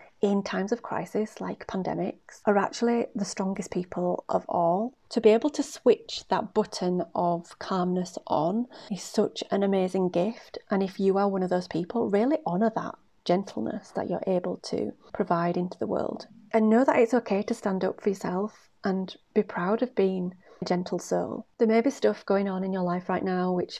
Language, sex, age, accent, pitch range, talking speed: English, female, 30-49, British, 180-220 Hz, 195 wpm